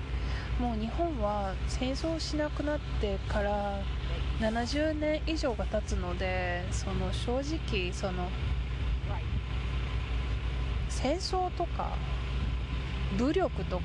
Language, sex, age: Japanese, female, 20-39